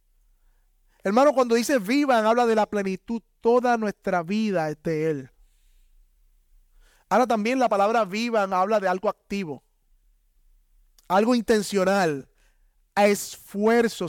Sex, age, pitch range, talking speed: male, 30-49, 170-245 Hz, 110 wpm